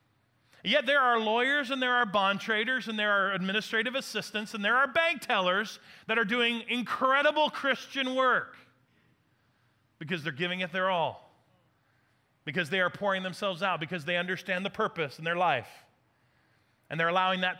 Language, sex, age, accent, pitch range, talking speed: English, male, 30-49, American, 165-245 Hz, 165 wpm